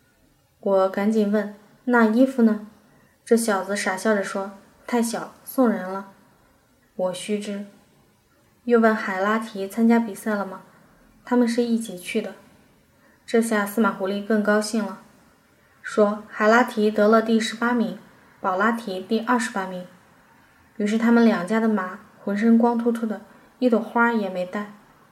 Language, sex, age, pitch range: Chinese, female, 20-39, 195-230 Hz